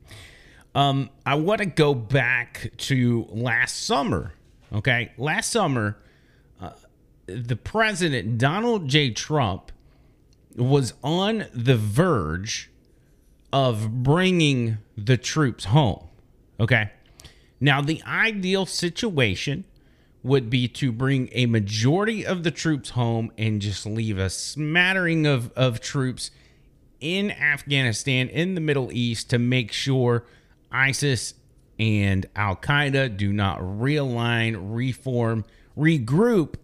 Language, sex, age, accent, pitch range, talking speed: English, male, 30-49, American, 115-150 Hz, 110 wpm